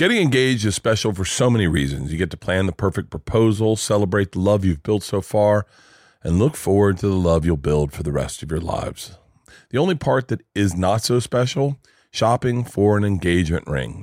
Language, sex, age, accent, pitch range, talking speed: English, male, 40-59, American, 90-115 Hz, 210 wpm